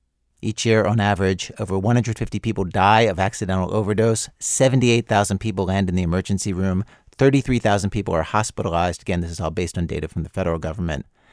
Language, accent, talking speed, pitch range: English, American, 175 wpm, 90-110 Hz